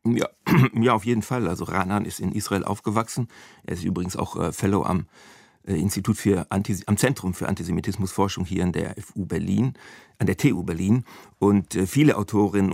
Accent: German